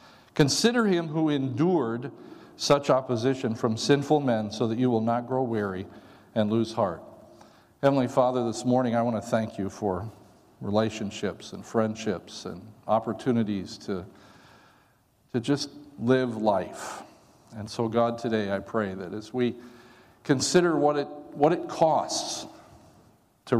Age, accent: 50-69, American